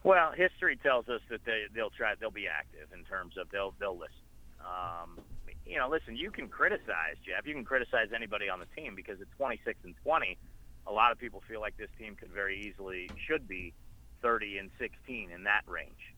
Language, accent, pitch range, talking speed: English, American, 90-110 Hz, 210 wpm